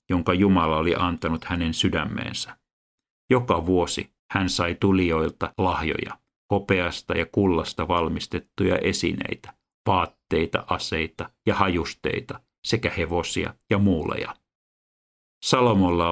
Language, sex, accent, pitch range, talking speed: Finnish, male, native, 80-95 Hz, 95 wpm